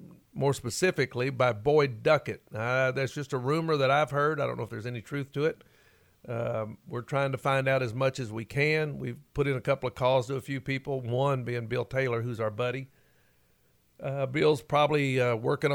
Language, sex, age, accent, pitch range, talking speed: English, male, 50-69, American, 120-145 Hz, 215 wpm